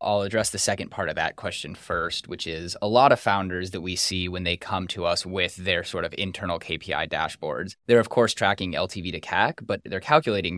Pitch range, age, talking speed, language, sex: 85-100 Hz, 20-39, 225 wpm, English, male